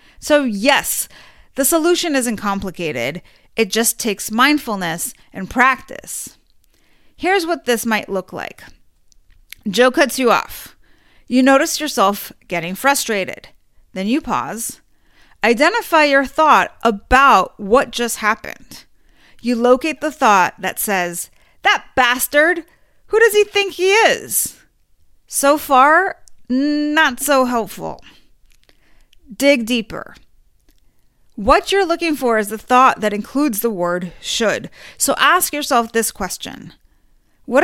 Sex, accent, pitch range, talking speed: female, American, 205-295 Hz, 120 wpm